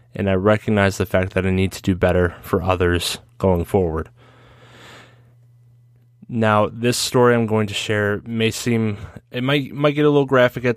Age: 20-39